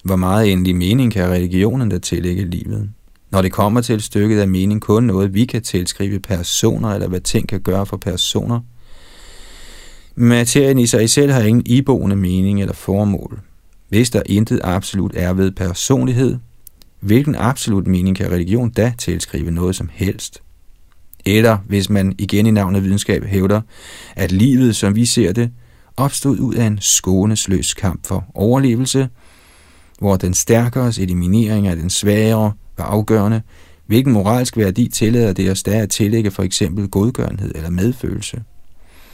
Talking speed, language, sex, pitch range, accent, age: 160 wpm, Danish, male, 90-115 Hz, native, 30-49